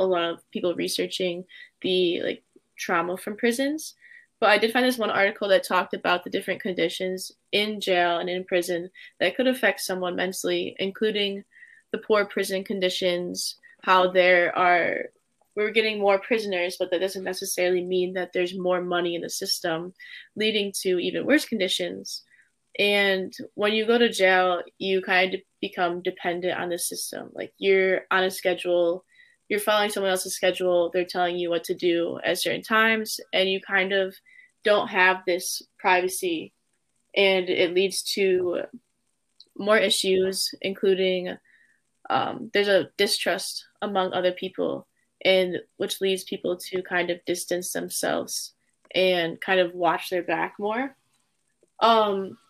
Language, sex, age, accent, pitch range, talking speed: English, female, 10-29, American, 180-210 Hz, 155 wpm